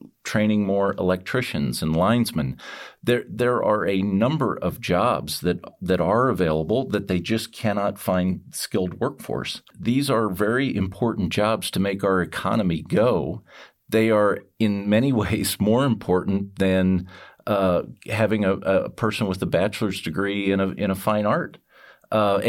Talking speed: 150 wpm